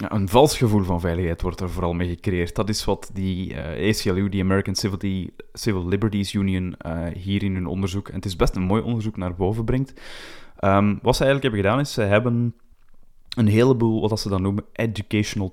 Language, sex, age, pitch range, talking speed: Dutch, male, 20-39, 90-110 Hz, 210 wpm